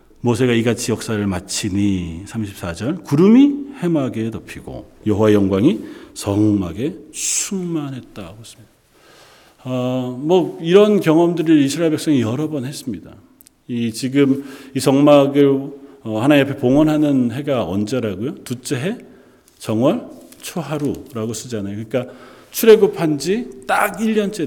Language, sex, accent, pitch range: Korean, male, native, 110-145 Hz